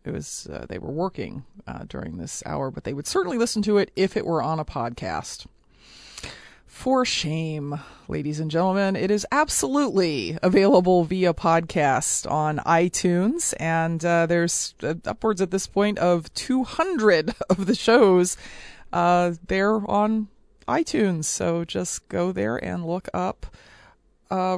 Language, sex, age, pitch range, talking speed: English, female, 30-49, 175-215 Hz, 145 wpm